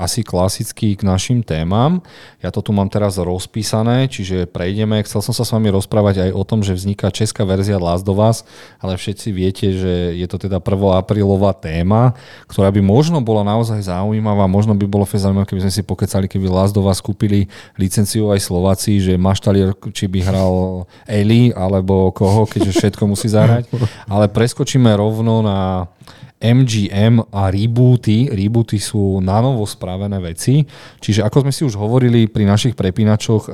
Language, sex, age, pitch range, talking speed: Slovak, male, 30-49, 95-115 Hz, 170 wpm